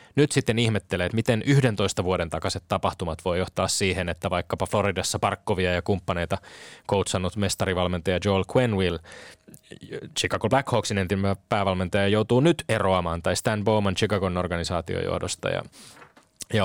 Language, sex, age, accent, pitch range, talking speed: Finnish, male, 20-39, native, 90-115 Hz, 135 wpm